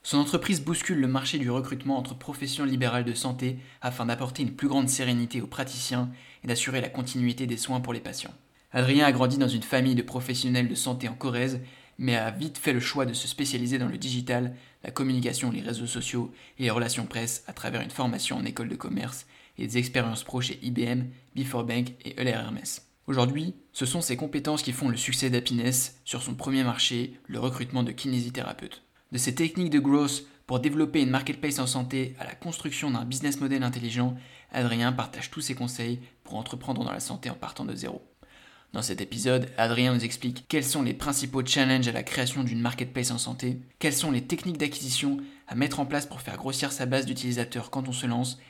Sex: male